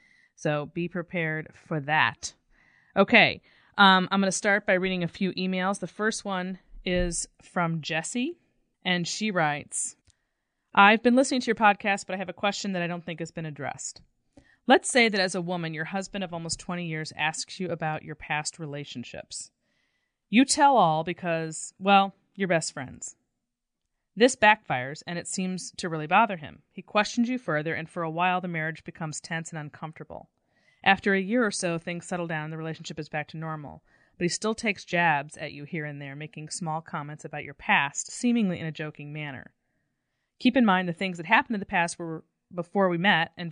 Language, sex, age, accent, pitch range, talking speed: English, female, 30-49, American, 155-200 Hz, 195 wpm